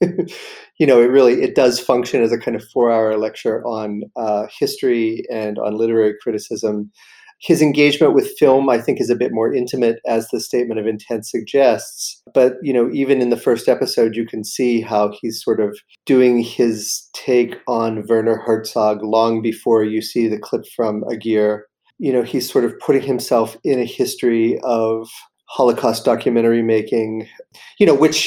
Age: 40-59